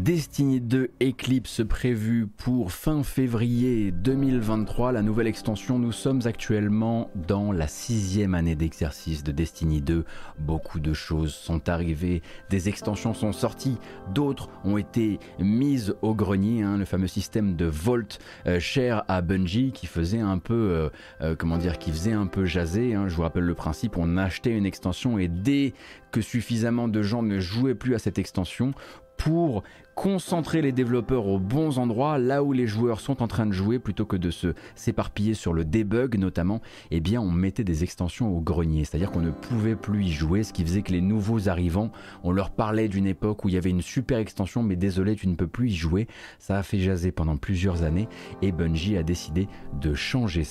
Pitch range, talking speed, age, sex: 90-115 Hz, 190 wpm, 30-49, male